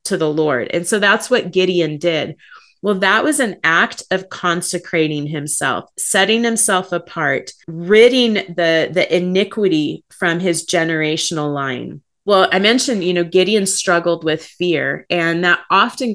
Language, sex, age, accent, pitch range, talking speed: English, female, 30-49, American, 165-195 Hz, 150 wpm